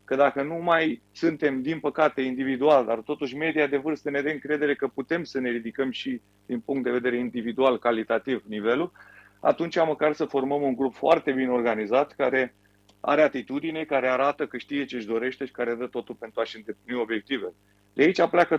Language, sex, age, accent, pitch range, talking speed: Romanian, male, 30-49, native, 120-150 Hz, 190 wpm